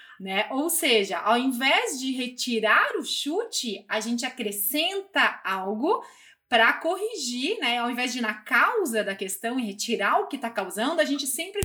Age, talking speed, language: 20-39, 170 wpm, Vietnamese